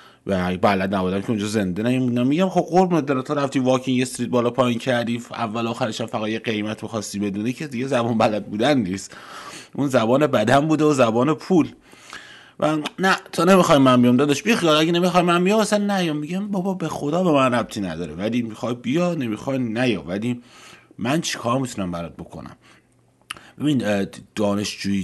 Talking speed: 175 wpm